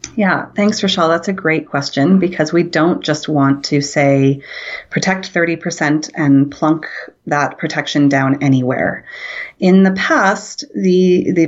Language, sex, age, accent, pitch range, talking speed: English, female, 30-49, American, 145-180 Hz, 140 wpm